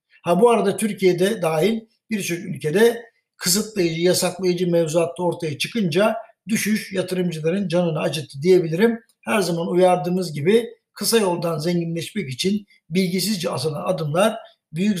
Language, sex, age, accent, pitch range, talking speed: Turkish, male, 60-79, native, 165-205 Hz, 115 wpm